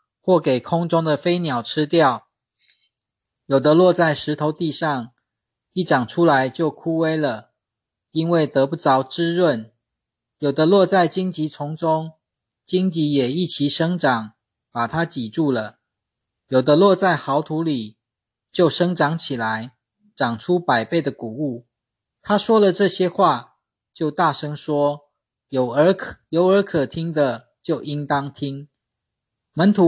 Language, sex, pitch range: Chinese, male, 125-170 Hz